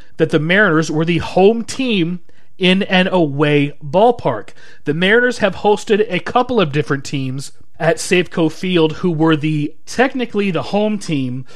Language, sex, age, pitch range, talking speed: English, male, 30-49, 145-180 Hz, 155 wpm